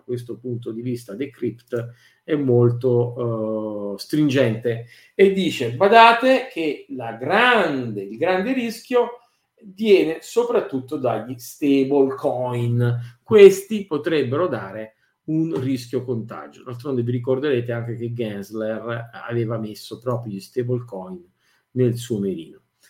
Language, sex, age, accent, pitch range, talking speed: Italian, male, 50-69, native, 120-165 Hz, 115 wpm